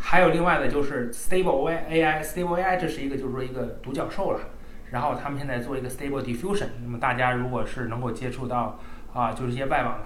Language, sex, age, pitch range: Chinese, male, 20-39, 120-155 Hz